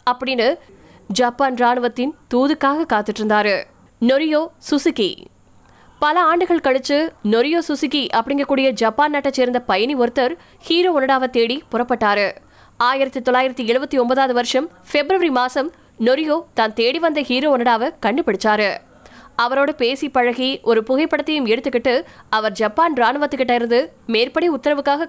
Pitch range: 240-295 Hz